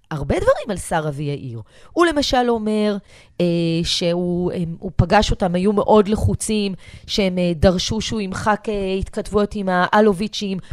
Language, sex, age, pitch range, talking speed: Hebrew, female, 30-49, 175-255 Hz, 150 wpm